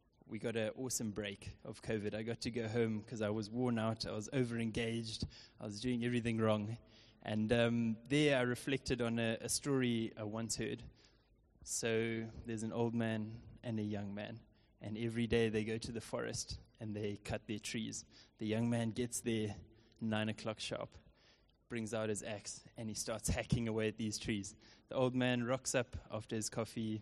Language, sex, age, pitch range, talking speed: English, male, 20-39, 110-120 Hz, 195 wpm